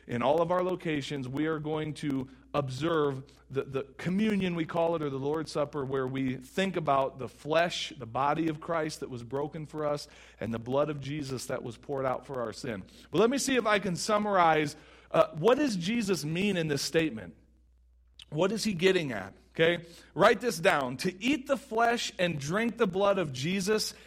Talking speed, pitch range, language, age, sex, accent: 205 wpm, 145-210 Hz, English, 40-59, male, American